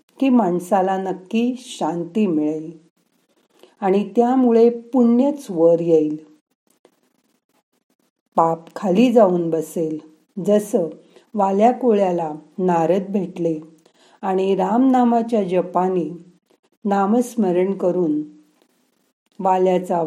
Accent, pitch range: native, 170-240 Hz